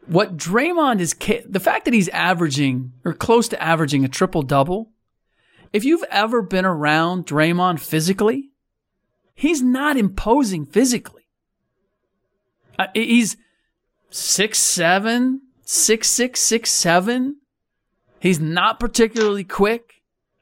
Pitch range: 160-220 Hz